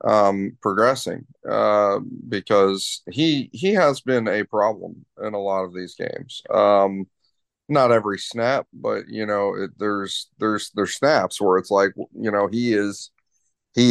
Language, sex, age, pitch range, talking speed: English, male, 30-49, 95-110 Hz, 150 wpm